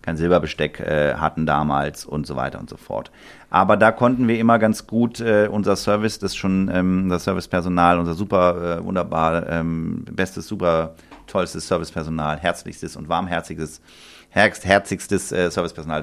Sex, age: male, 40-59